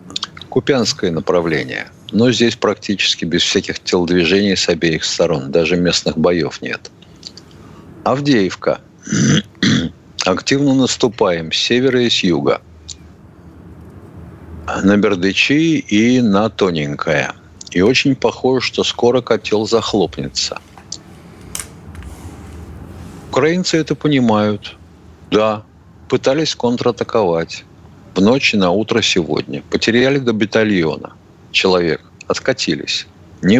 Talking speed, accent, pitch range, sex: 95 wpm, native, 85-130 Hz, male